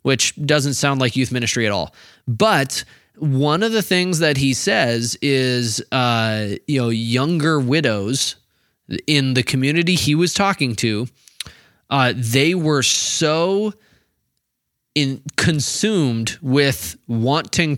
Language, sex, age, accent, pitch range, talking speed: English, male, 20-39, American, 120-150 Hz, 120 wpm